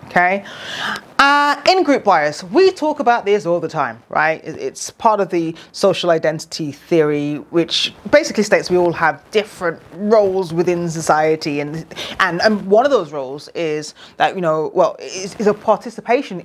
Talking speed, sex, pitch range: 165 wpm, female, 155-200 Hz